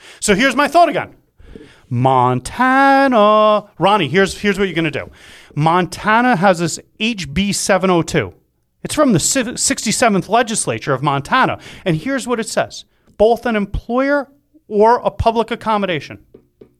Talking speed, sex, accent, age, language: 135 wpm, male, American, 30-49, English